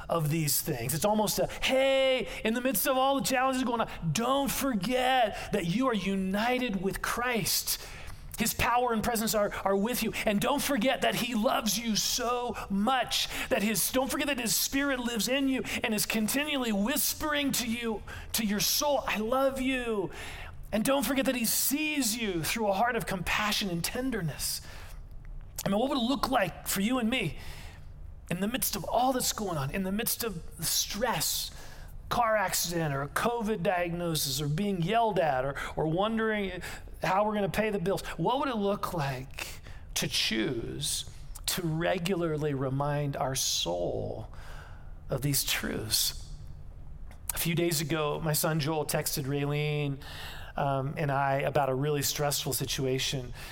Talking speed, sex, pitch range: 170 wpm, male, 145-240 Hz